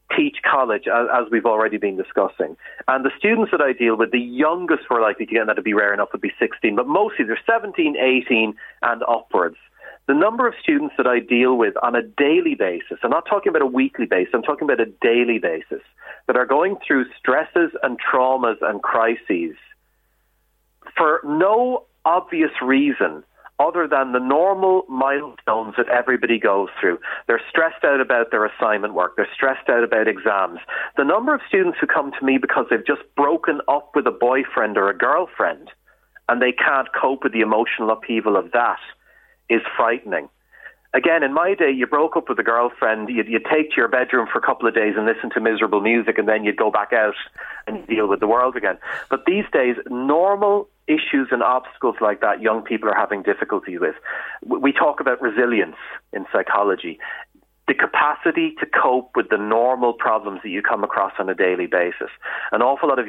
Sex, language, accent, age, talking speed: male, English, Irish, 40-59, 195 wpm